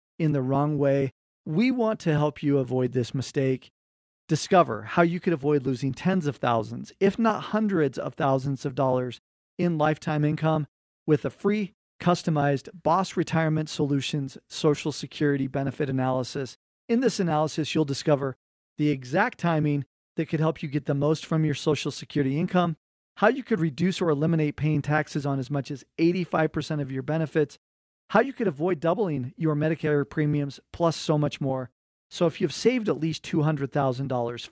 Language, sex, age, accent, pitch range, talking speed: English, male, 40-59, American, 135-165 Hz, 170 wpm